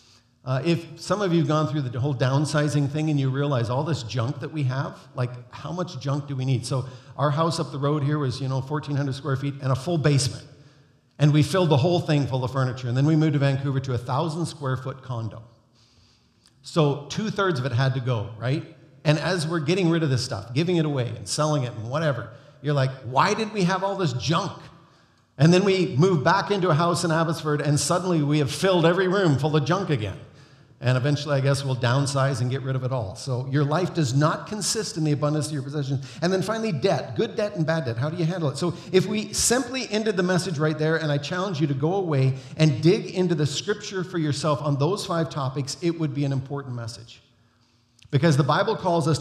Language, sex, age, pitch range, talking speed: English, male, 50-69, 135-165 Hz, 240 wpm